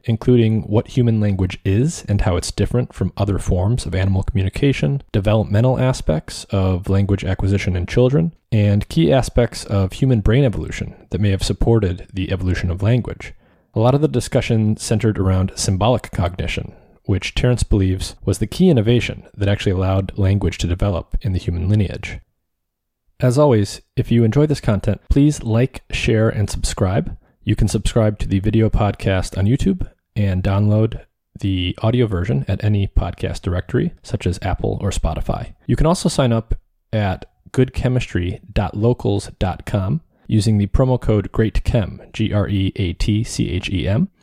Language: English